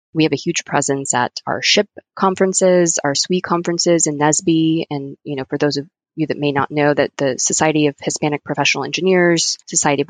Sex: female